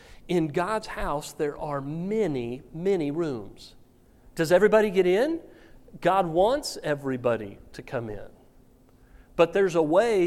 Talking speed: 130 wpm